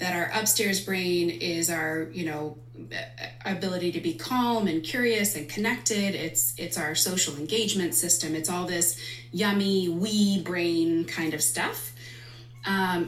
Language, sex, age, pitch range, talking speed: English, female, 20-39, 160-205 Hz, 145 wpm